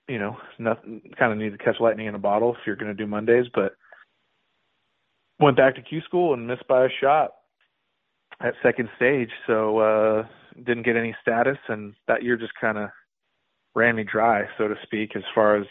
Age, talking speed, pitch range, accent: 30-49, 205 wpm, 105-120 Hz, American